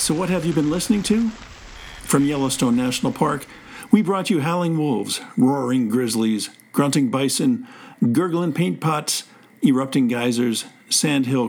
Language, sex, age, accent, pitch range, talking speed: English, male, 50-69, American, 125-210 Hz, 135 wpm